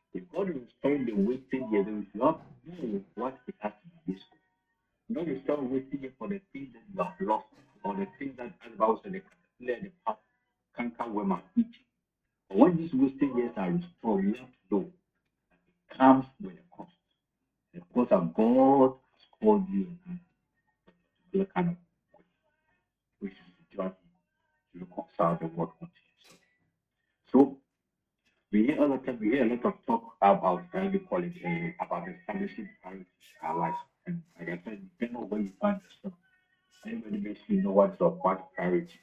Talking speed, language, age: 195 wpm, English, 60-79